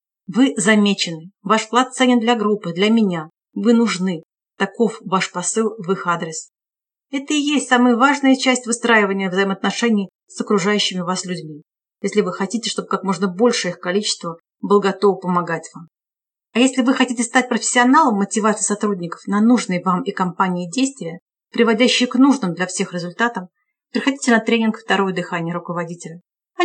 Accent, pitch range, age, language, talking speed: native, 195-245 Hz, 40-59, Russian, 155 wpm